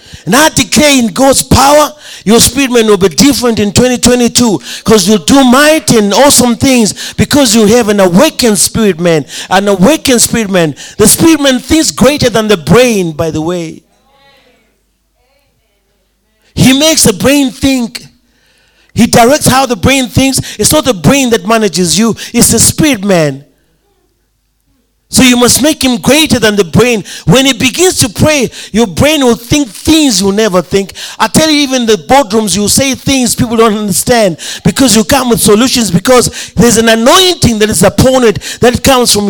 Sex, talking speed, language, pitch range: male, 175 wpm, English, 205-265 Hz